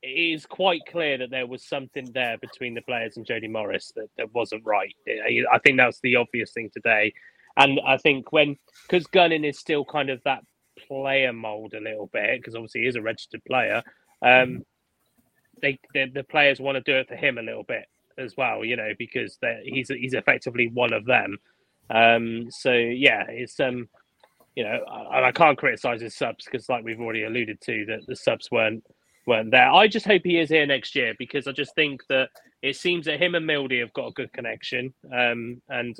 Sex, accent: male, British